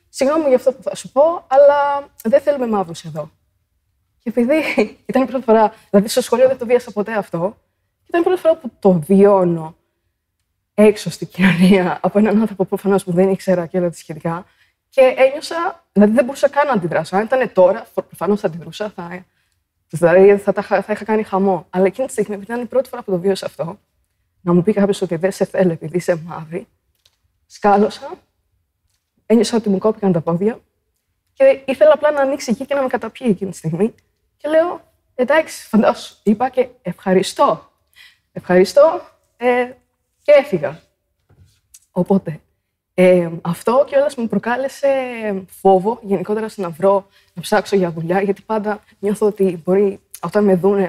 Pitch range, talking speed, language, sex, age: 175-235 Hz, 170 wpm, Greek, female, 20-39